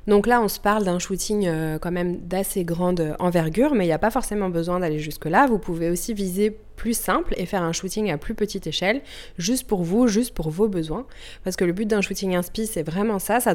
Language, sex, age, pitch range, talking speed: French, female, 20-39, 175-215 Hz, 245 wpm